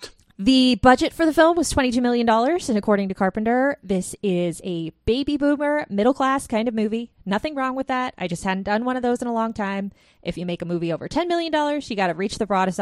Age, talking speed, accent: 20-39, 240 wpm, American